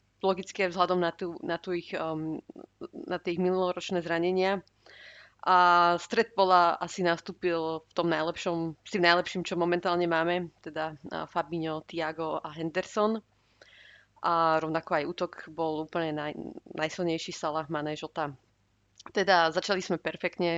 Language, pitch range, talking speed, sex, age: Slovak, 160-180 Hz, 130 wpm, female, 30-49